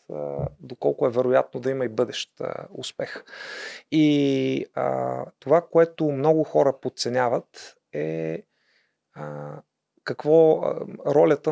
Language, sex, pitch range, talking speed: Bulgarian, male, 120-145 Hz, 110 wpm